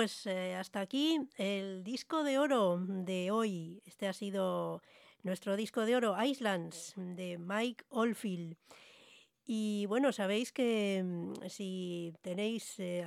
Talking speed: 130 wpm